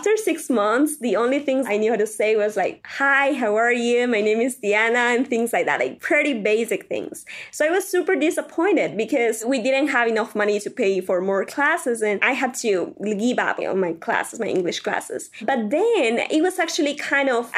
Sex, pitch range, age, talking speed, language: female, 215-275 Hz, 20-39, 220 wpm, English